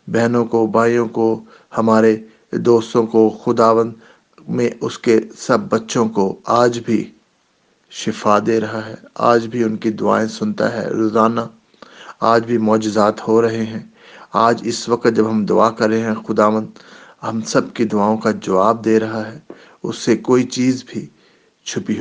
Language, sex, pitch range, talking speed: English, male, 105-115 Hz, 155 wpm